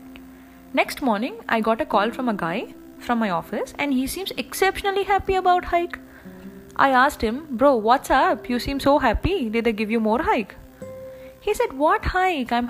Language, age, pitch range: English, 20-39, 175-275 Hz